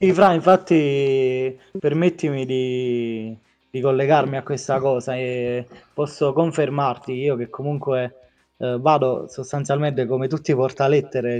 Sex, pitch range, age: male, 125-150 Hz, 20-39